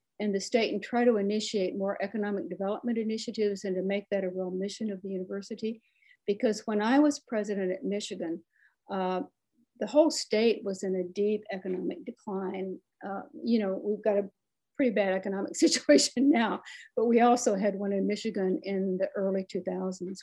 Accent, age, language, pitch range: American, 60-79, English, 195-235 Hz